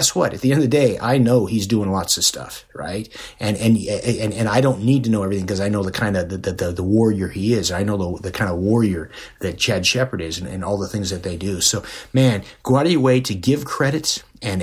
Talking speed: 280 wpm